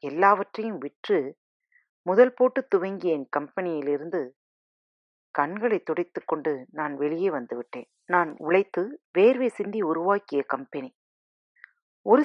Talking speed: 105 wpm